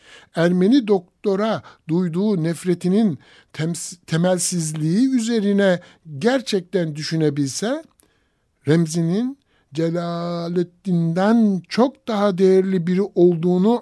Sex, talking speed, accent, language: male, 65 wpm, native, Turkish